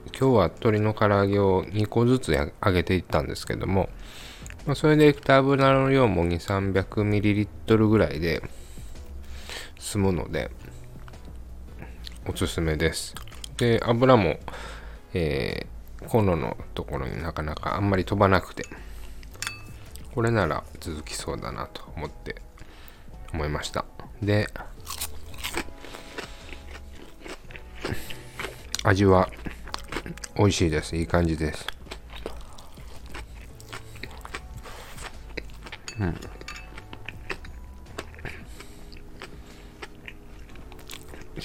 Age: 20-39